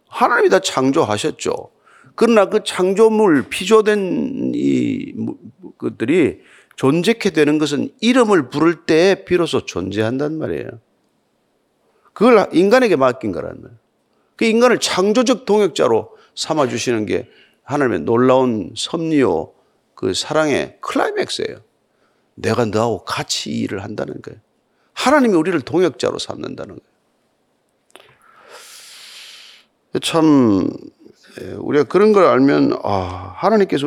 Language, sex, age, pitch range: Korean, male, 40-59, 150-245 Hz